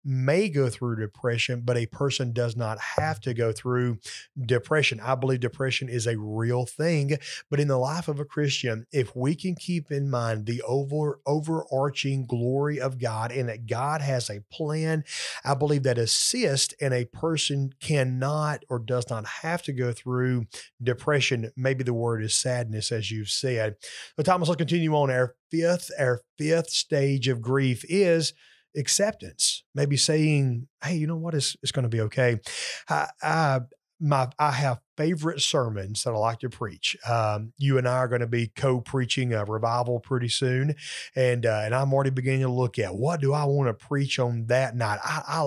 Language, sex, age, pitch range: English, male, 30-49, 120-145 Hz